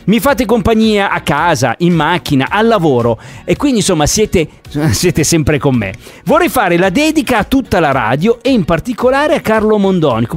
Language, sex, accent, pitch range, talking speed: Italian, male, native, 145-220 Hz, 180 wpm